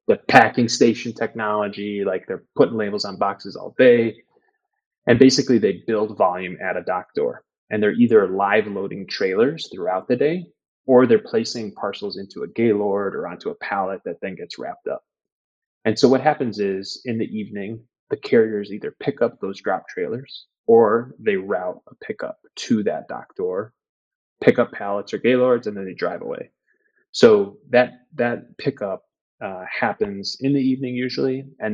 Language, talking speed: English, 175 wpm